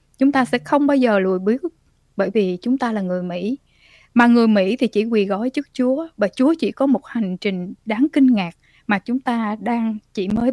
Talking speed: 230 wpm